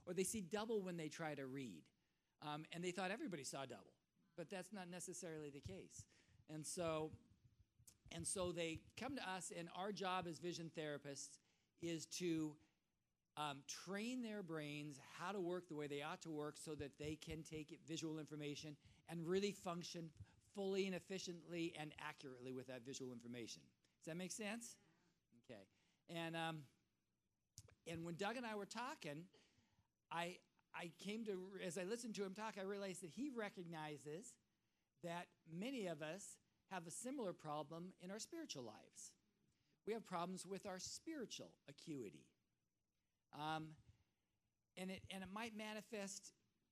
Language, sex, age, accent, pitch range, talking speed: English, male, 50-69, American, 150-195 Hz, 160 wpm